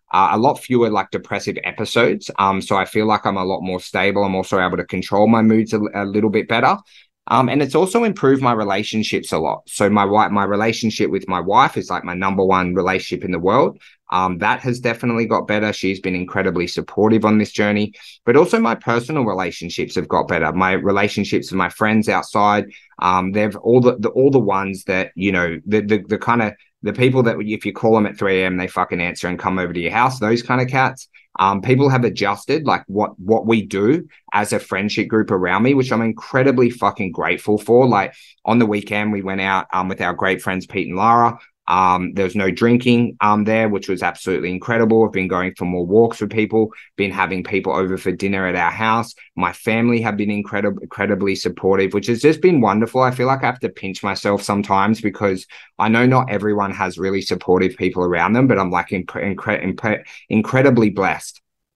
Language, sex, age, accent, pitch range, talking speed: English, male, 20-39, Australian, 95-115 Hz, 220 wpm